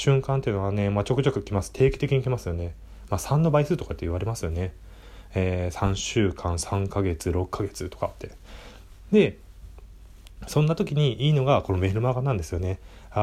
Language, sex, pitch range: Japanese, male, 95-140 Hz